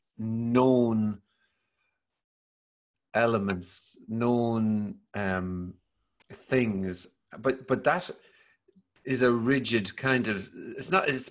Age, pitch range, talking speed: 40-59, 110-135 Hz, 85 wpm